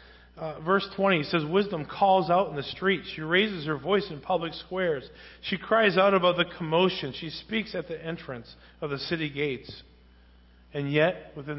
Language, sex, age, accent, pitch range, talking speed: English, male, 40-59, American, 115-160 Hz, 185 wpm